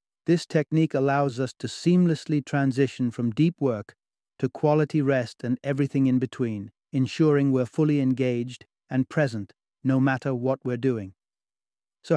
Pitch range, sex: 125-150 Hz, male